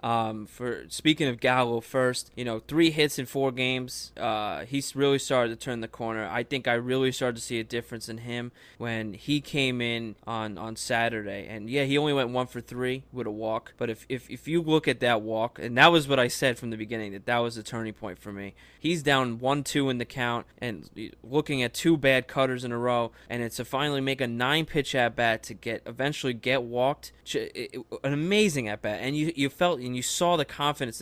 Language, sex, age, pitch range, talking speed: English, male, 20-39, 120-145 Hz, 235 wpm